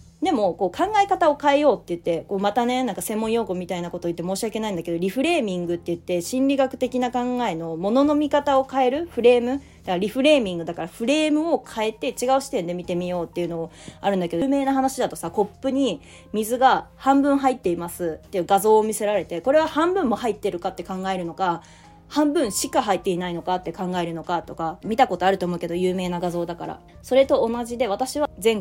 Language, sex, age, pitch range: Japanese, female, 20-39, 180-265 Hz